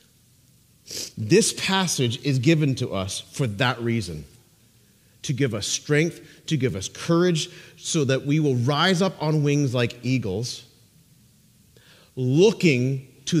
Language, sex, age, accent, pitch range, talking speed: English, male, 40-59, American, 125-195 Hz, 130 wpm